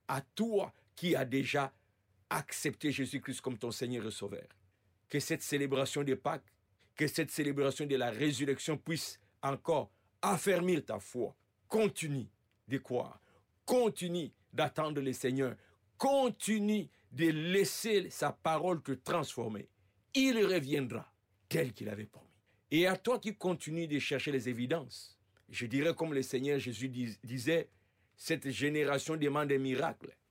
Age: 50-69